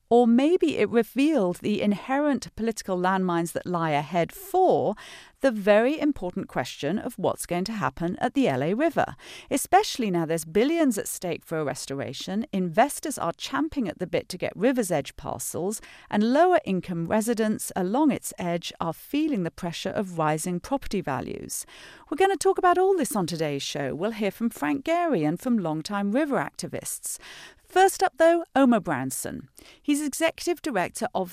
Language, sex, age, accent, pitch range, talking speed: English, female, 40-59, British, 170-285 Hz, 170 wpm